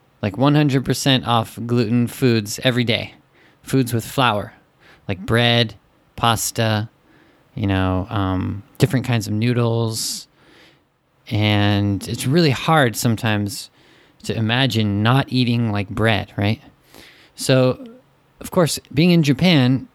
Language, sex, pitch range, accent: Japanese, male, 110-135 Hz, American